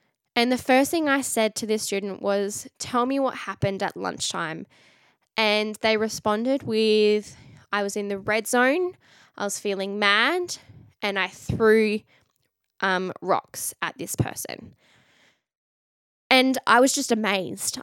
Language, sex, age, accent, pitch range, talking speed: English, female, 10-29, Australian, 195-225 Hz, 145 wpm